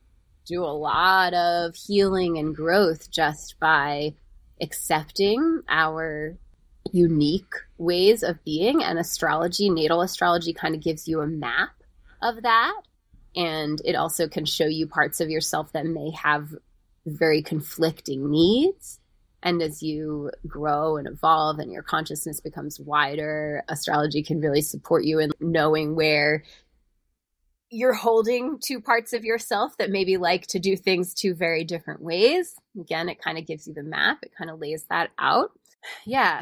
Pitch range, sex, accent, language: 155-180 Hz, female, American, English